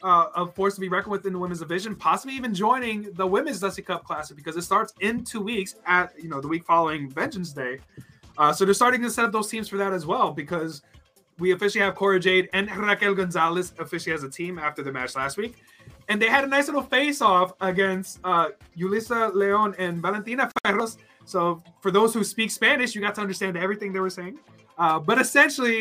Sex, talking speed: male, 220 wpm